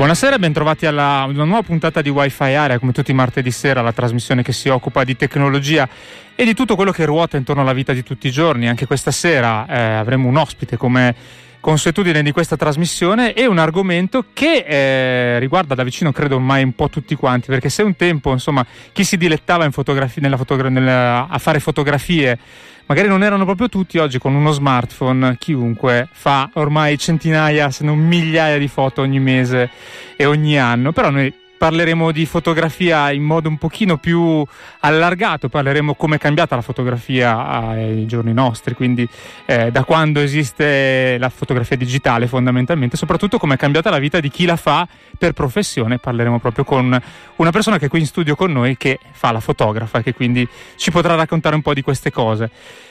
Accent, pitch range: native, 130-165 Hz